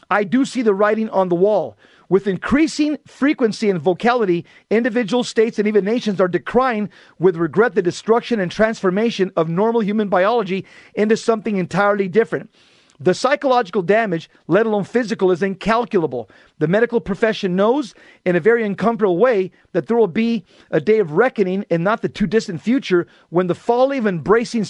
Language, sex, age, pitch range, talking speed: English, male, 40-59, 185-230 Hz, 170 wpm